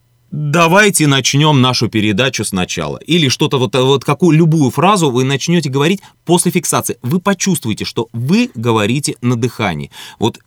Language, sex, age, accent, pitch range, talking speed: Russian, male, 30-49, native, 110-150 Hz, 145 wpm